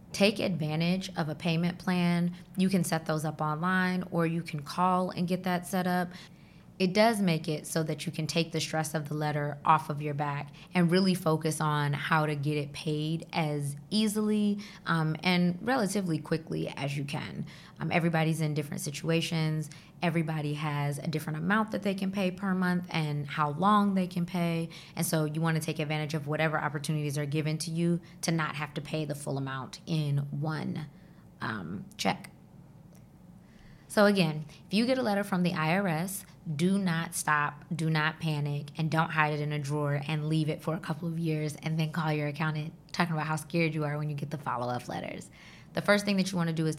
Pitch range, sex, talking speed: 155-180 Hz, female, 210 wpm